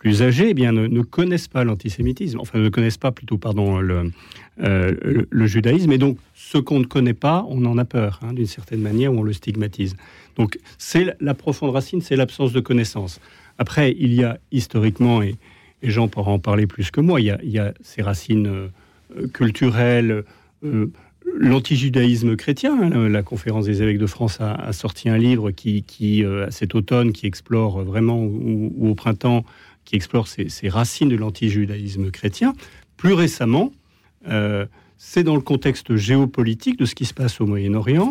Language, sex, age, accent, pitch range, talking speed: French, male, 40-59, French, 105-125 Hz, 190 wpm